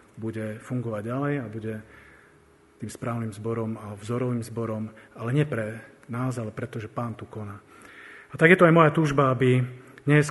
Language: Slovak